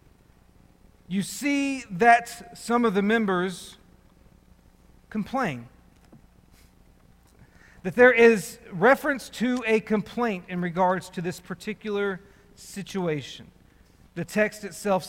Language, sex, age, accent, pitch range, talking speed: English, male, 40-59, American, 180-235 Hz, 95 wpm